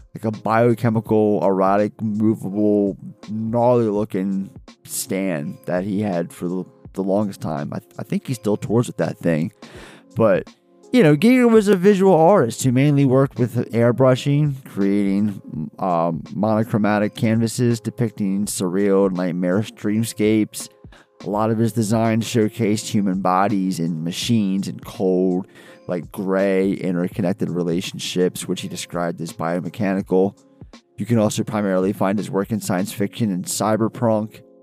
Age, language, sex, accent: 30-49, English, male, American